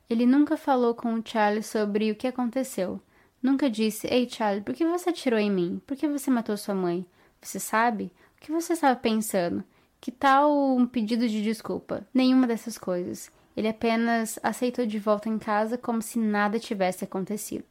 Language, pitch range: Portuguese, 215-255 Hz